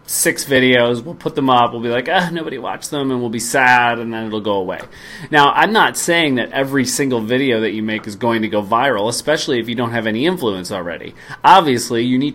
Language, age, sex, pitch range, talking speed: English, 30-49, male, 110-140 Hz, 235 wpm